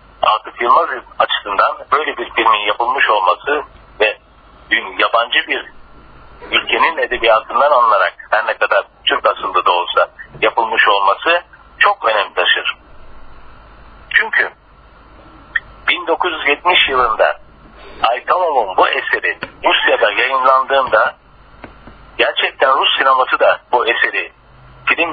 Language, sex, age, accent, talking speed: Turkish, male, 50-69, native, 100 wpm